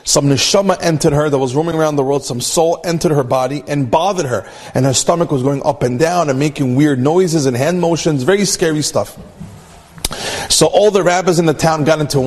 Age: 40-59